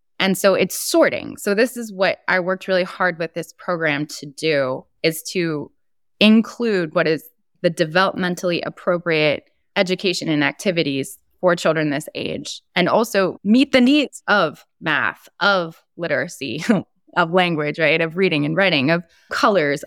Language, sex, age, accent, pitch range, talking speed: English, female, 20-39, American, 160-220 Hz, 150 wpm